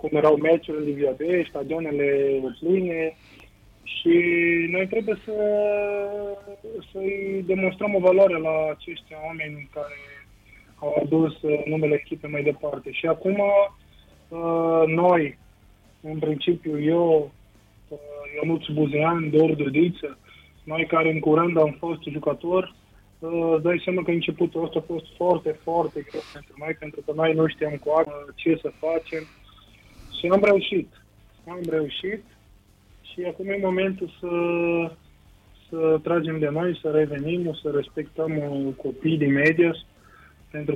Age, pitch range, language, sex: 20-39, 145-170 Hz, Romanian, male